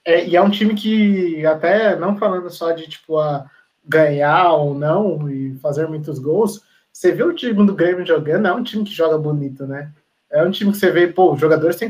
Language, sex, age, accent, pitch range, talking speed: Portuguese, male, 20-39, Brazilian, 155-185 Hz, 215 wpm